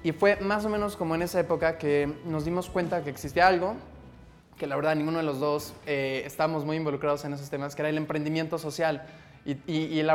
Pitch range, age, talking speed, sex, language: 145-165 Hz, 20-39, 230 wpm, male, Spanish